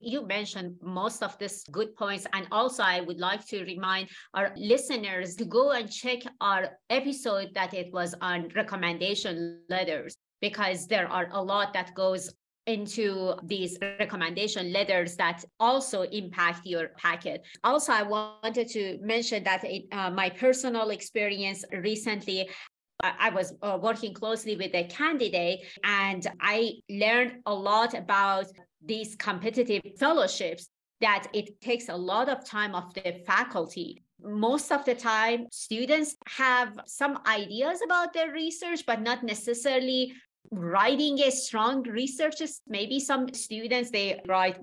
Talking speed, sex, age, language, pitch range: 140 wpm, female, 30-49, English, 190-235 Hz